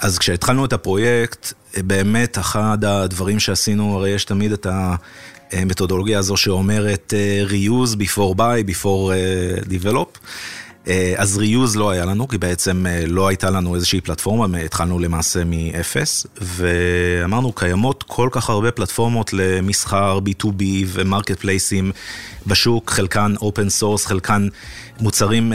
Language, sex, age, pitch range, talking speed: Hebrew, male, 30-49, 95-110 Hz, 120 wpm